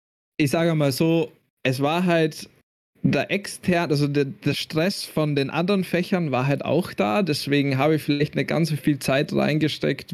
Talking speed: 180 wpm